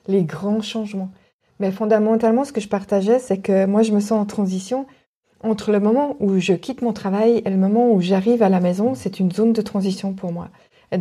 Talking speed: 225 wpm